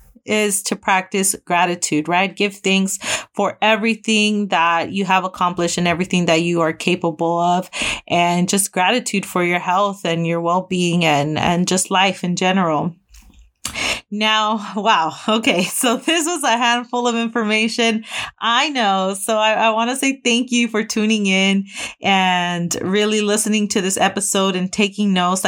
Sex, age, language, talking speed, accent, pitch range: female, 30-49, English, 160 wpm, American, 185-230 Hz